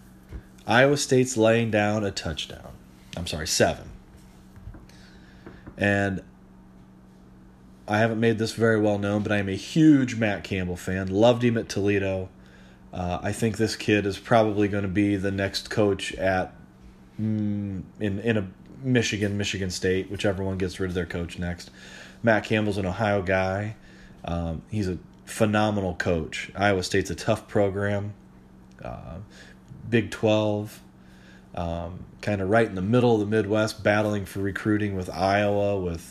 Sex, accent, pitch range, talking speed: male, American, 65-105 Hz, 150 wpm